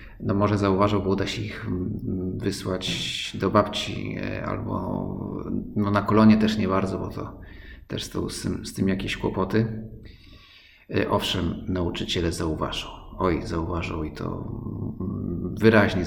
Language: Polish